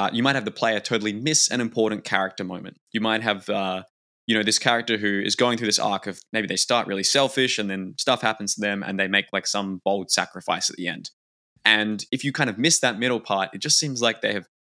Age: 20-39